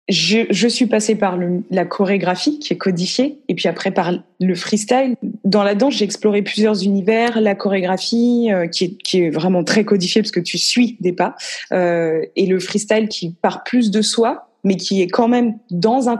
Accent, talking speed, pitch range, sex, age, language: French, 210 wpm, 190-235 Hz, female, 20-39, French